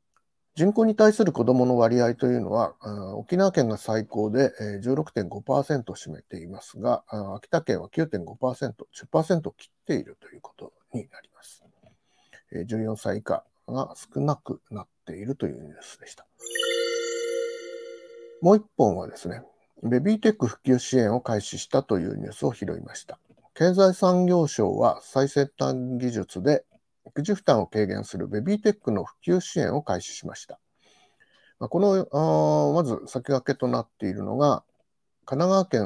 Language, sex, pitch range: Japanese, male, 110-170 Hz